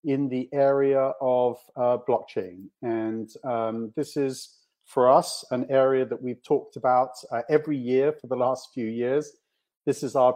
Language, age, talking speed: English, 40-59, 170 wpm